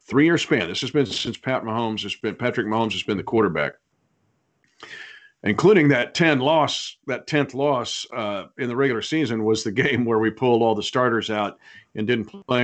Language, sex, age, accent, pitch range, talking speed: English, male, 50-69, American, 110-150 Hz, 195 wpm